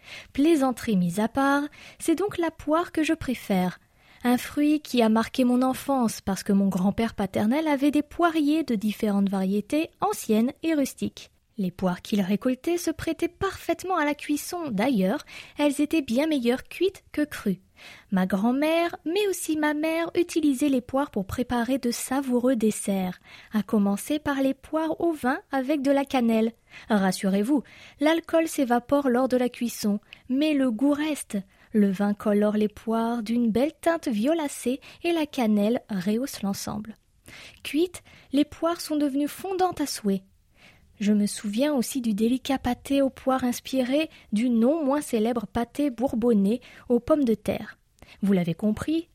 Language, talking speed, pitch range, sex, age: French, 160 wpm, 220-305 Hz, female, 20-39